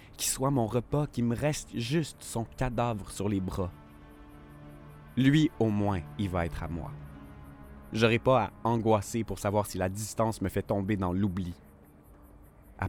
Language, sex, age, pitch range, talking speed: French, male, 20-39, 75-110 Hz, 170 wpm